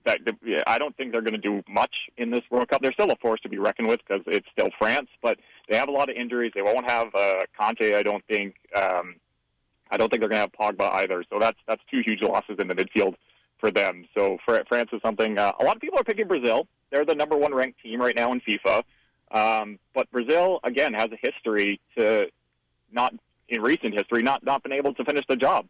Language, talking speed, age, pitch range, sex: English, 240 wpm, 30-49, 105-130 Hz, male